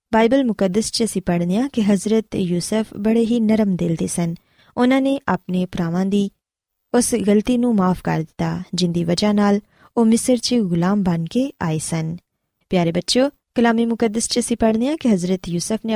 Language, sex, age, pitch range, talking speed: Punjabi, female, 20-39, 175-240 Hz, 170 wpm